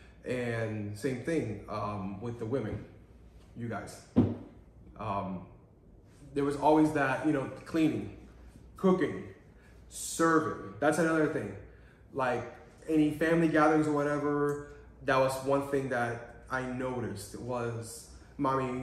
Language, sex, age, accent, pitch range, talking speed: English, male, 20-39, American, 115-145 Hz, 120 wpm